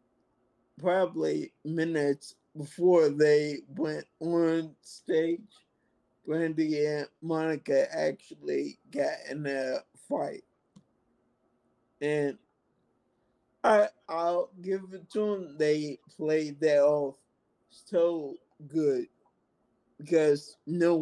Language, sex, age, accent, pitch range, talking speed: English, male, 20-39, American, 150-180 Hz, 85 wpm